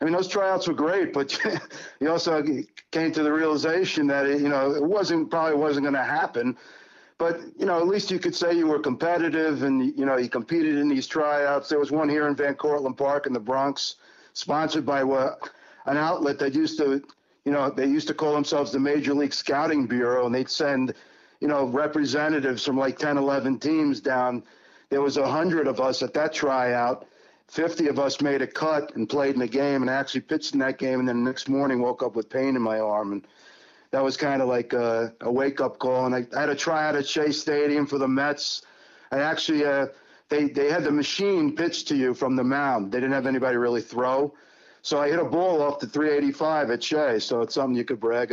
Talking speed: 225 wpm